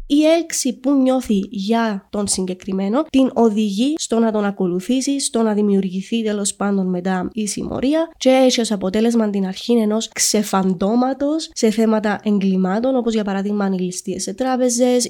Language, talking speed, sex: Greek, 165 wpm, female